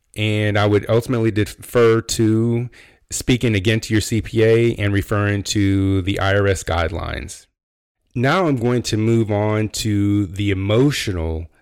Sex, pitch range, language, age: male, 95-115 Hz, English, 30-49